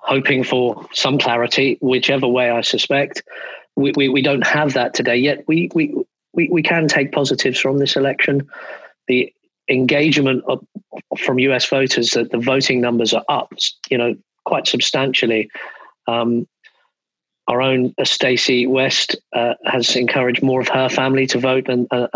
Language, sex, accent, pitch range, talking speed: English, male, British, 120-140 Hz, 155 wpm